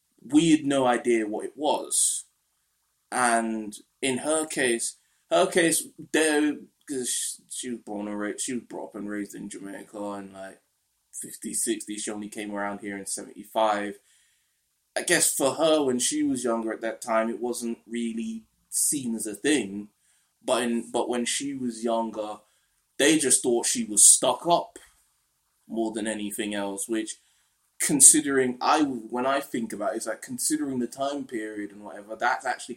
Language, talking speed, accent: English, 170 wpm, British